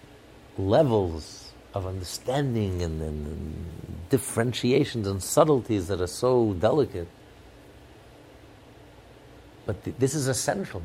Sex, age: male, 50-69